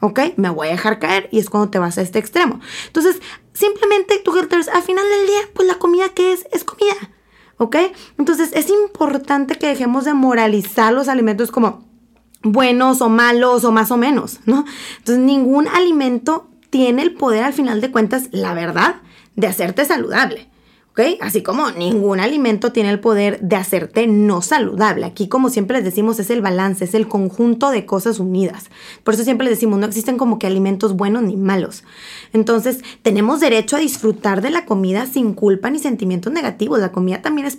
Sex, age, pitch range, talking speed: female, 20-39, 215-280 Hz, 190 wpm